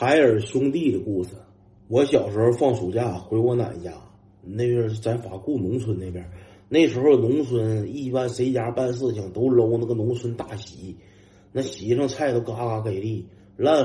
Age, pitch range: 30-49, 100-130 Hz